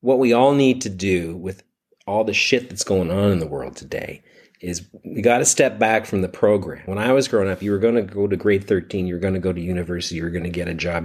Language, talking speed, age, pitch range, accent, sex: English, 290 wpm, 40-59, 85-100 Hz, American, male